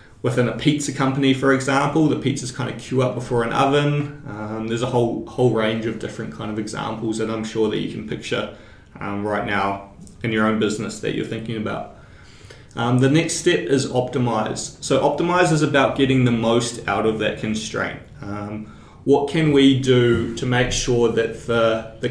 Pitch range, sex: 110-130 Hz, male